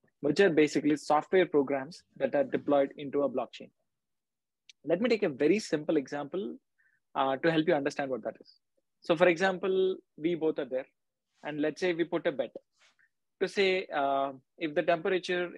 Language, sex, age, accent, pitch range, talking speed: English, male, 20-39, Indian, 145-180 Hz, 175 wpm